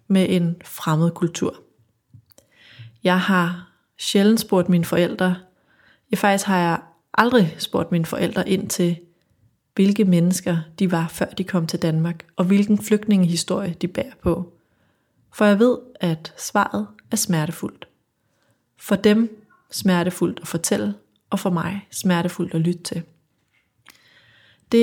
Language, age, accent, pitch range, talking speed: Danish, 30-49, native, 170-200 Hz, 135 wpm